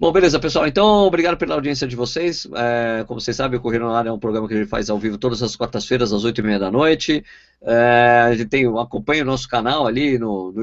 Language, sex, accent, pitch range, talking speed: Portuguese, male, Brazilian, 115-150 Hz, 260 wpm